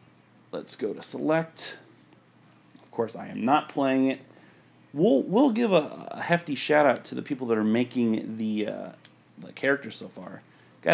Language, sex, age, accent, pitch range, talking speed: English, male, 30-49, American, 110-160 Hz, 170 wpm